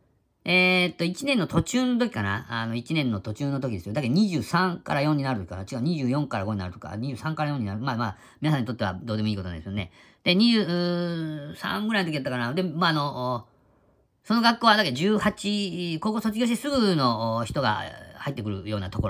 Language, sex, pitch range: Japanese, female, 105-175 Hz